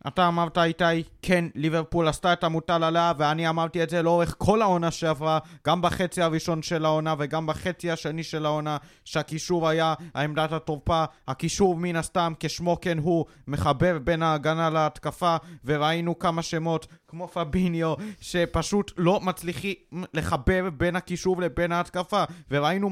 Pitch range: 150-175 Hz